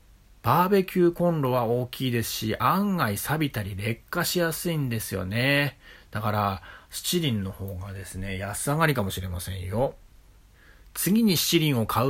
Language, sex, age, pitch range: Japanese, male, 40-59, 100-145 Hz